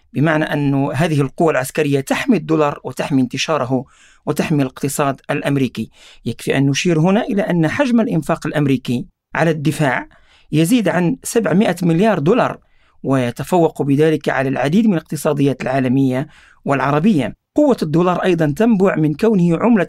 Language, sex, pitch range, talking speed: Arabic, male, 140-175 Hz, 130 wpm